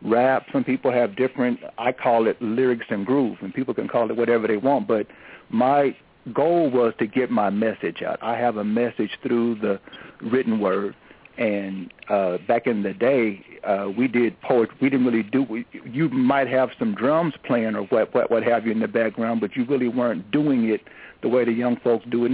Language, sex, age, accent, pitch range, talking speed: English, male, 60-79, American, 115-135 Hz, 210 wpm